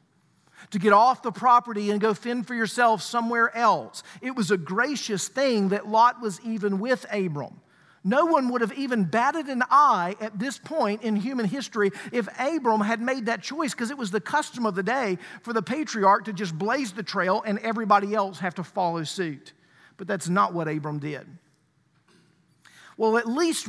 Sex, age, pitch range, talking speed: male, 50-69, 190-245 Hz, 190 wpm